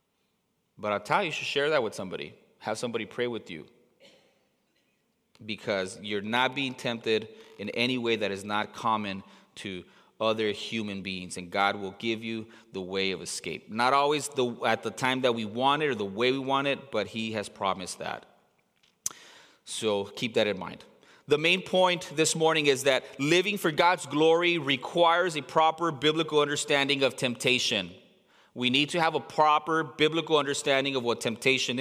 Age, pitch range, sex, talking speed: 30-49, 120-165 Hz, male, 175 wpm